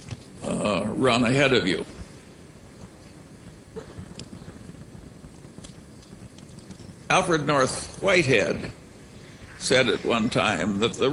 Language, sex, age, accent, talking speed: English, male, 60-79, American, 75 wpm